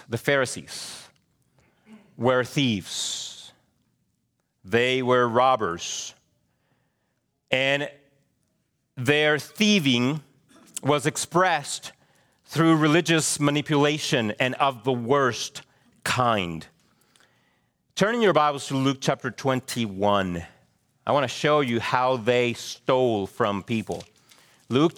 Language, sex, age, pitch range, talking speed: English, male, 40-59, 125-180 Hz, 90 wpm